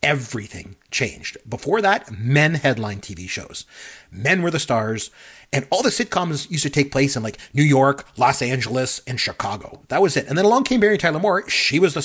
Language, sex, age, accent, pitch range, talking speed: English, male, 40-59, American, 110-155 Hz, 205 wpm